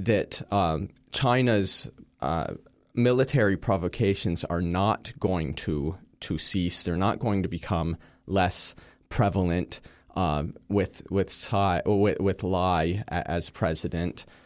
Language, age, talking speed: English, 30-49, 115 wpm